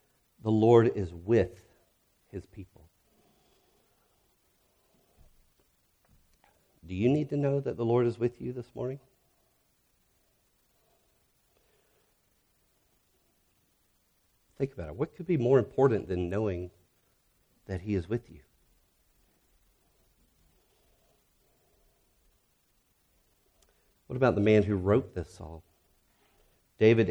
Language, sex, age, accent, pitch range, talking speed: English, male, 50-69, American, 95-120 Hz, 95 wpm